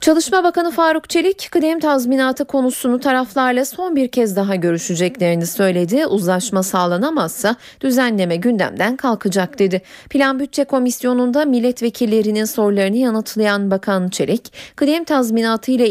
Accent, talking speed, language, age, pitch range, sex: native, 115 wpm, Turkish, 40-59, 190-275 Hz, female